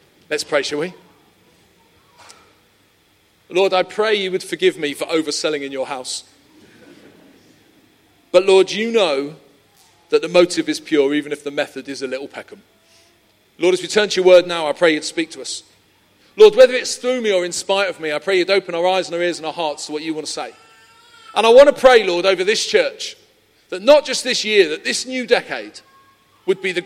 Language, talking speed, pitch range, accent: English, 215 wpm, 175-290 Hz, British